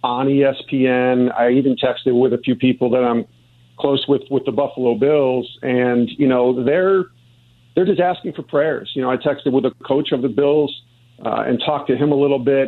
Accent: American